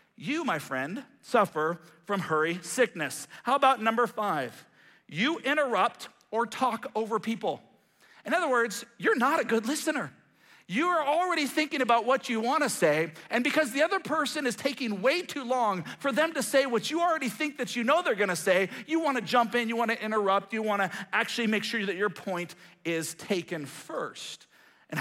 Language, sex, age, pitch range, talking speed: English, male, 40-59, 200-275 Hz, 185 wpm